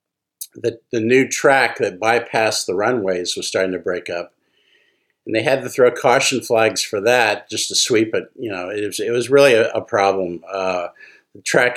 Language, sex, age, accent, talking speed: English, male, 50-69, American, 200 wpm